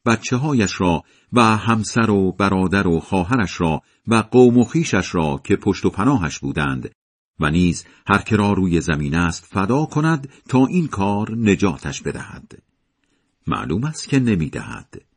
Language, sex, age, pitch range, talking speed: Persian, male, 50-69, 85-125 Hz, 150 wpm